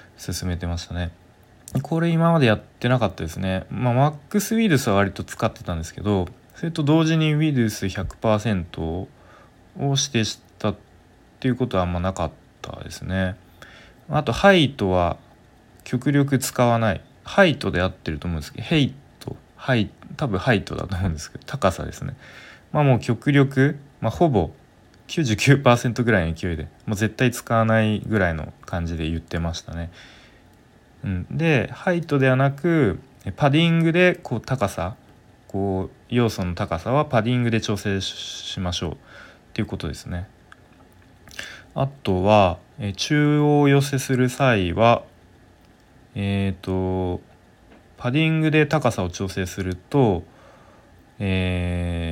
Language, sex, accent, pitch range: Japanese, male, native, 90-135 Hz